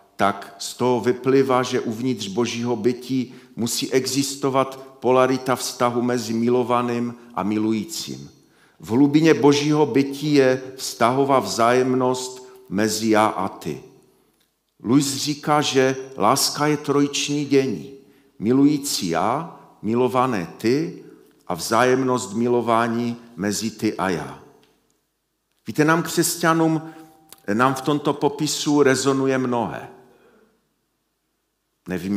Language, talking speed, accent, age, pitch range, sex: Czech, 105 wpm, native, 50-69, 110-135 Hz, male